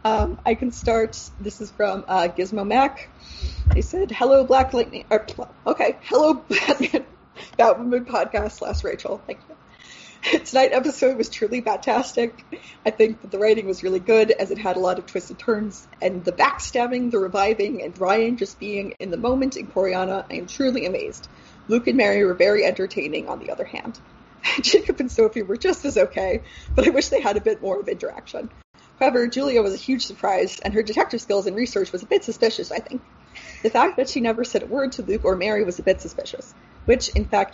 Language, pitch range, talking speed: English, 200-265 Hz, 205 wpm